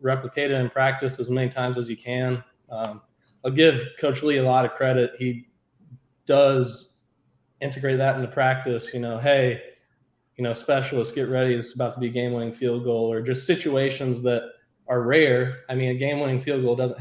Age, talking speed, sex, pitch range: 20-39, 200 wpm, male, 115-130 Hz